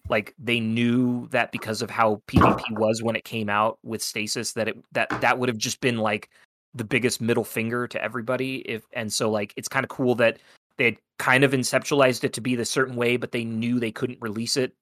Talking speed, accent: 230 wpm, American